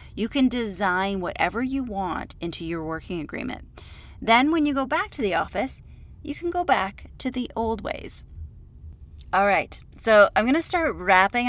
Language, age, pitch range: English, 30-49, 170-235 Hz